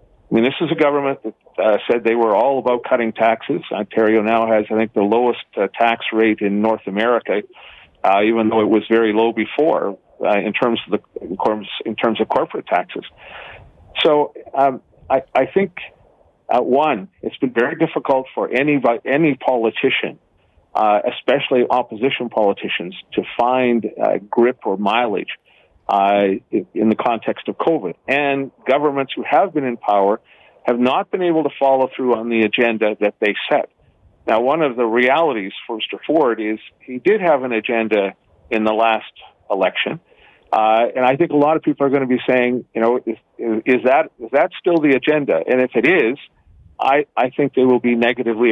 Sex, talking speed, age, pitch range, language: male, 185 wpm, 50-69, 110-135 Hz, English